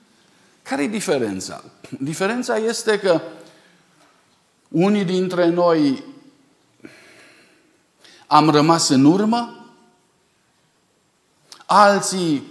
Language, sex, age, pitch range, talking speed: Romanian, male, 50-69, 130-185 Hz, 65 wpm